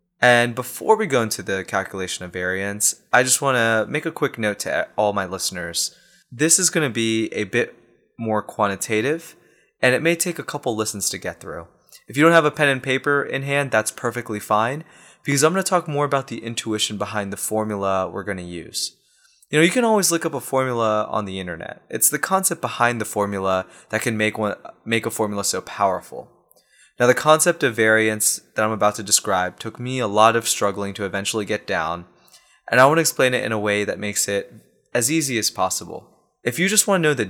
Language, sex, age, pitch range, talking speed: English, male, 20-39, 105-140 Hz, 225 wpm